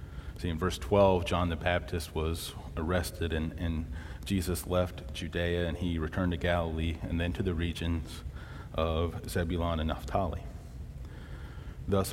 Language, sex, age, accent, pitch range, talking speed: English, male, 30-49, American, 75-90 Hz, 145 wpm